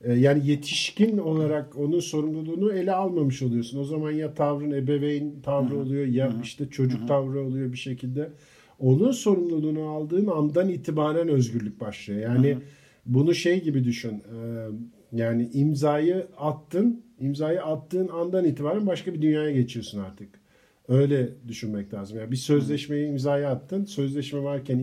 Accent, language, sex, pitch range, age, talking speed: native, Turkish, male, 125-155 Hz, 50-69, 140 wpm